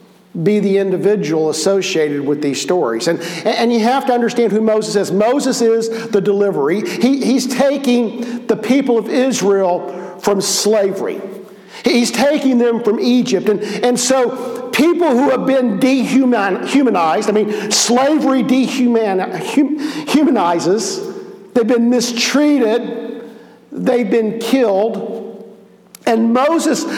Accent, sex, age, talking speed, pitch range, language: American, male, 50-69, 120 wpm, 195-255 Hz, English